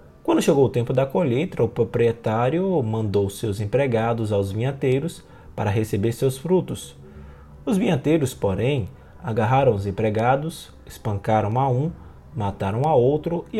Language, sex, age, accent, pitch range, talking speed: Portuguese, male, 20-39, Brazilian, 100-150 Hz, 130 wpm